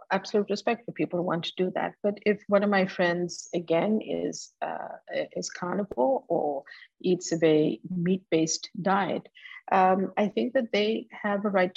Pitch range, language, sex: 170-195 Hz, English, female